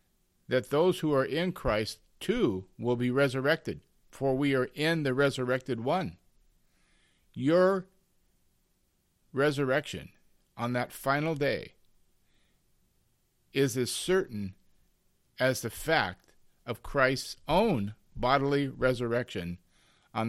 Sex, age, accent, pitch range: male, 50-69, American, 105-135 Hz